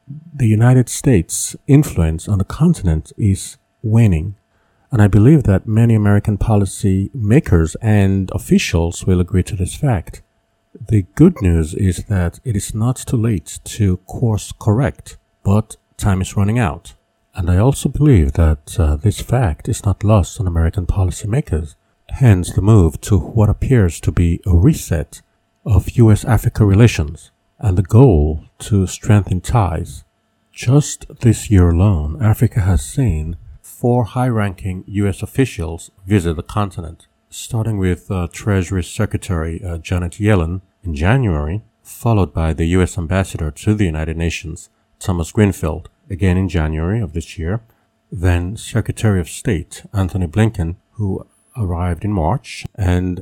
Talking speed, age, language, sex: 145 wpm, 50-69, English, male